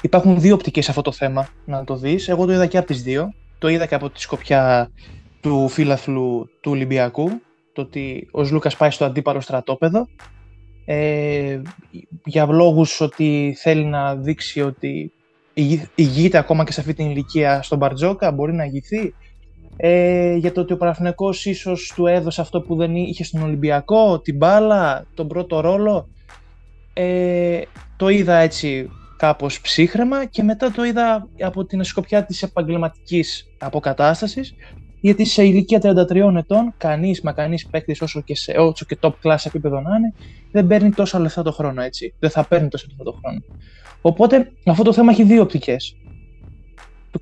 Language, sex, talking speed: Greek, male, 165 wpm